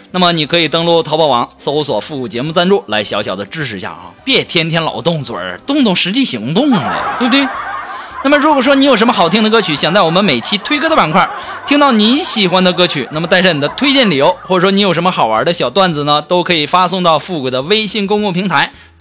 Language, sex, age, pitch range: Chinese, male, 20-39, 155-220 Hz